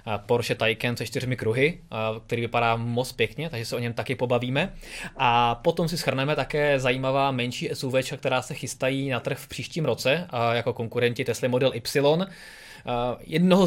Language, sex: Czech, male